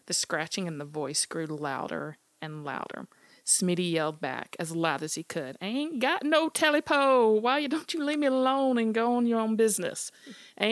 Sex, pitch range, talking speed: female, 165-205 Hz, 200 wpm